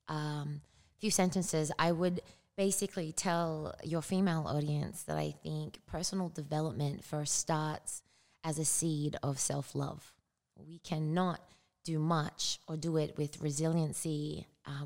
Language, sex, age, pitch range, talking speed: English, female, 20-39, 145-165 Hz, 135 wpm